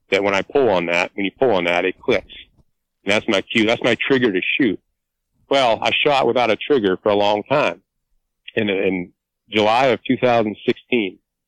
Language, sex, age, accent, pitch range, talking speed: English, male, 40-59, American, 90-115 Hz, 195 wpm